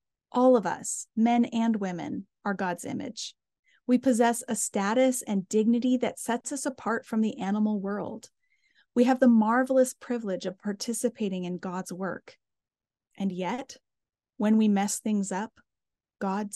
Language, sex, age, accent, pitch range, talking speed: English, female, 30-49, American, 195-240 Hz, 150 wpm